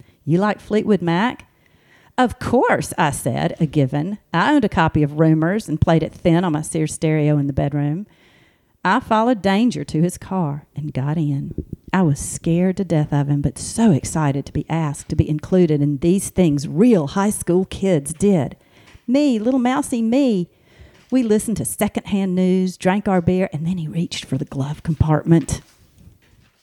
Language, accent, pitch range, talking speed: English, American, 150-190 Hz, 180 wpm